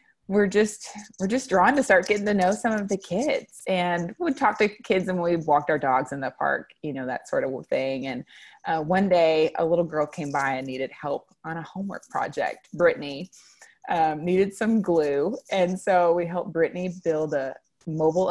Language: English